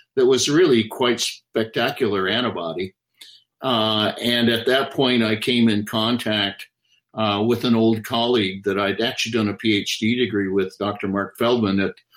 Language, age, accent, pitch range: English, 60-79, American, 110-125 Hz